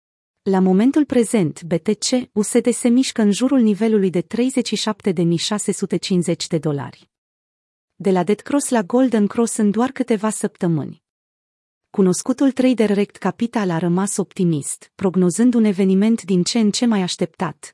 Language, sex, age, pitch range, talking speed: Romanian, female, 30-49, 180-230 Hz, 135 wpm